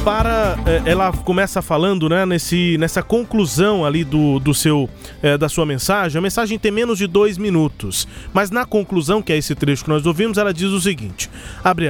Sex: male